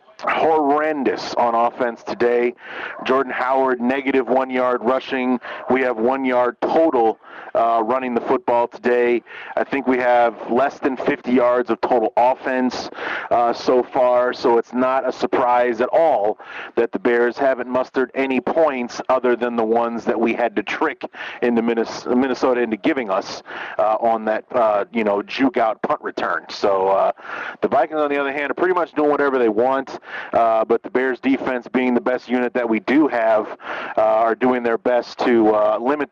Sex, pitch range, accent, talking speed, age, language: male, 115-130 Hz, American, 180 wpm, 40-59, English